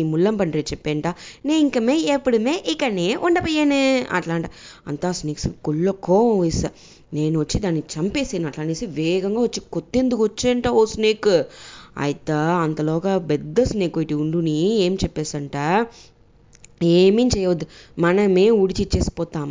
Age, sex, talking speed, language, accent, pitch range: 20-39, female, 85 wpm, English, Indian, 160-200 Hz